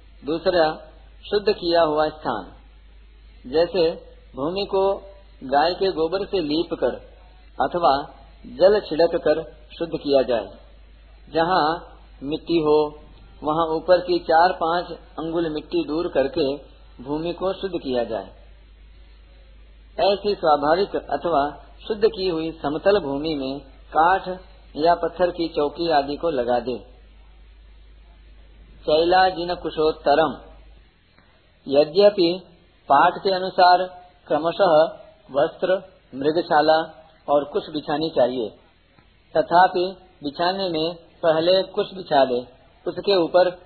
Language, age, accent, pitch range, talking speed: Hindi, 50-69, native, 140-185 Hz, 105 wpm